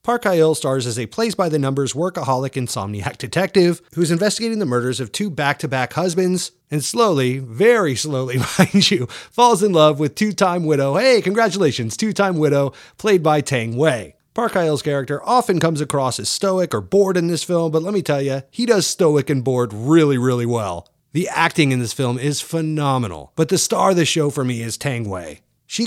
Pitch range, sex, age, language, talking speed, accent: 130-190 Hz, male, 30-49, English, 195 wpm, American